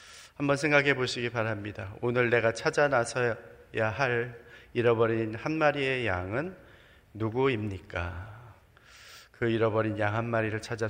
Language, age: Korean, 30-49